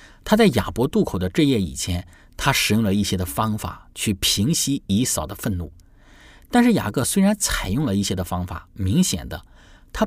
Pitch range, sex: 90-120 Hz, male